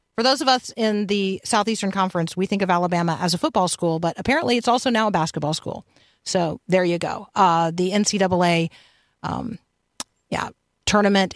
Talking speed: 175 wpm